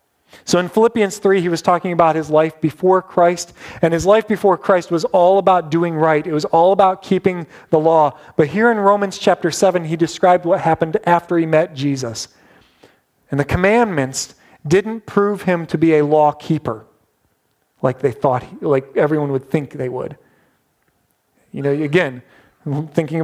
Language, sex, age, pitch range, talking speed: English, male, 40-59, 145-180 Hz, 175 wpm